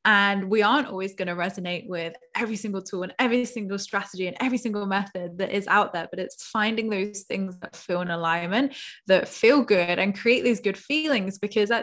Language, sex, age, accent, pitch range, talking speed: English, female, 10-29, British, 180-220 Hz, 210 wpm